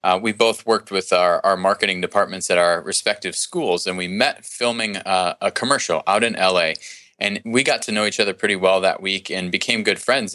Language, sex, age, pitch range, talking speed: English, male, 20-39, 95-110 Hz, 220 wpm